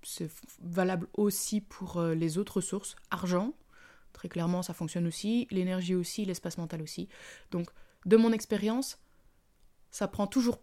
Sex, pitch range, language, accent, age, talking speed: female, 180-225 Hz, French, French, 20-39, 140 wpm